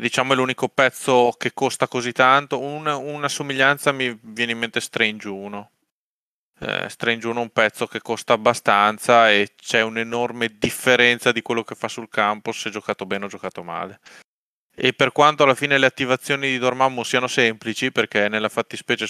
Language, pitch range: Italian, 115-135 Hz